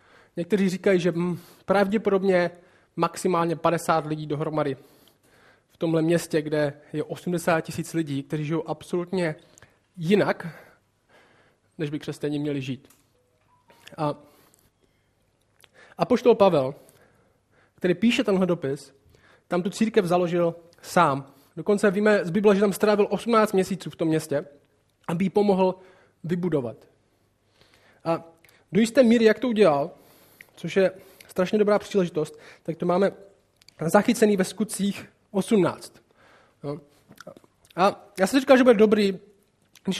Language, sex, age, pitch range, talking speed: Czech, male, 20-39, 155-205 Hz, 125 wpm